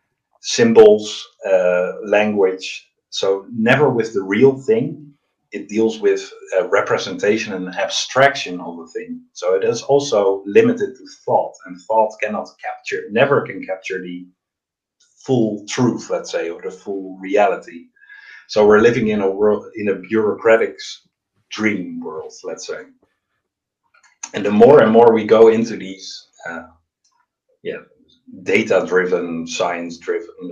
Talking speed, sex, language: 135 wpm, male, English